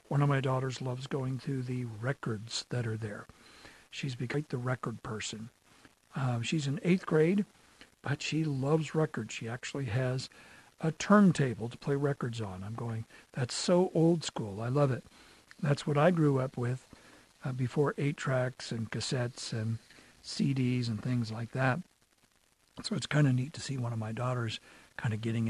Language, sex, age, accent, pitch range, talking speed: English, male, 60-79, American, 125-170 Hz, 180 wpm